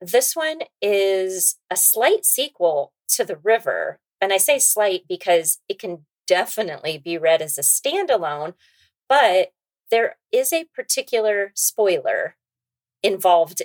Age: 30-49